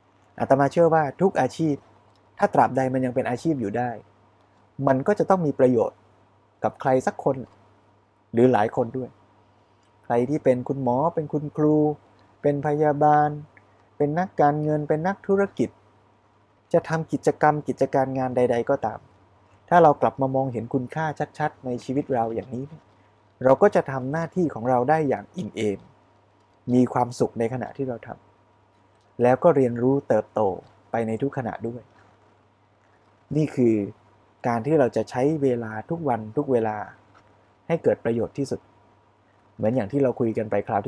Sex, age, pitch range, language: male, 20-39, 105-140 Hz, Thai